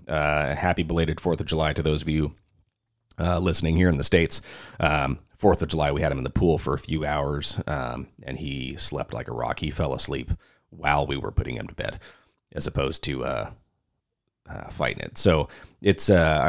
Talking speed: 210 wpm